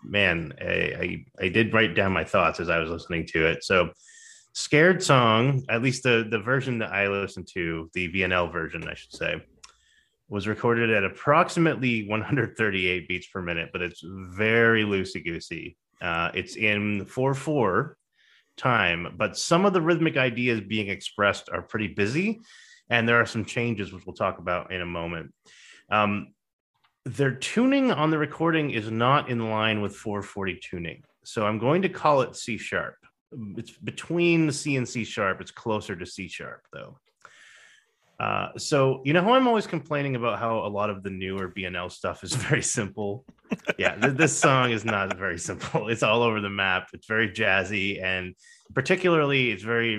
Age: 30-49